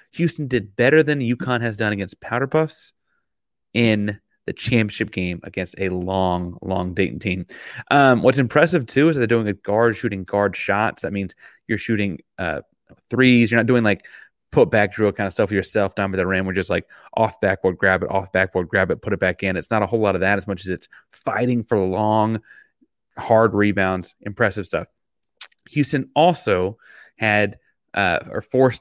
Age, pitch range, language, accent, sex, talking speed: 30-49, 95-115 Hz, English, American, male, 185 wpm